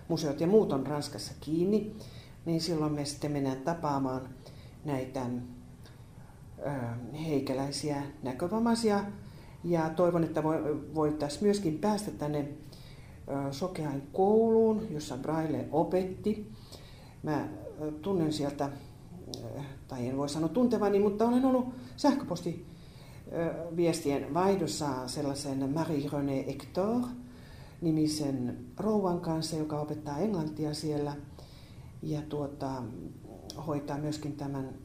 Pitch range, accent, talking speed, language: 135-165 Hz, native, 95 wpm, Finnish